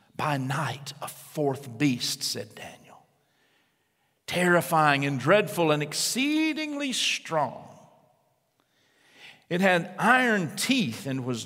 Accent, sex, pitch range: American, male, 145-215 Hz